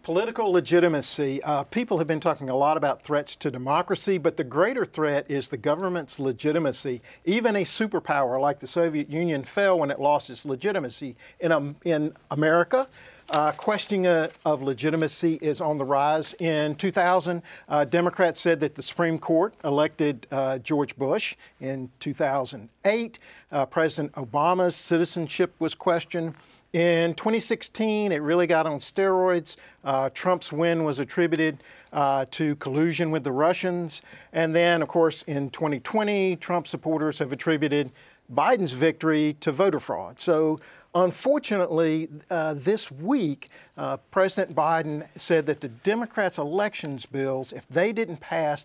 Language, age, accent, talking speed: English, 50-69, American, 145 wpm